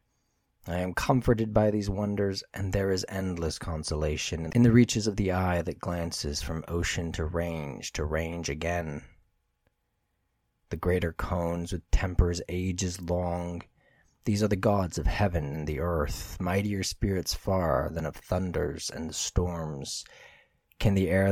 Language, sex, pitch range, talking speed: English, male, 80-95 Hz, 150 wpm